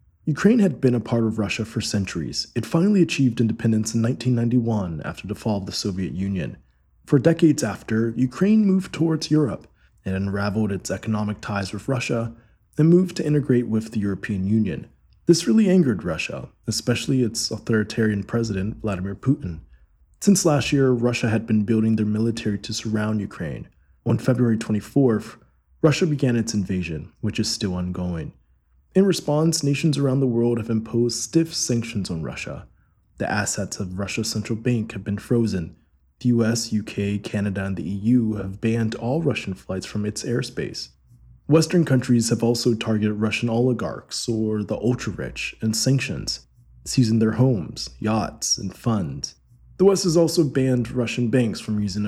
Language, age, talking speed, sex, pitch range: English, 20-39, 160 wpm, male, 100-125 Hz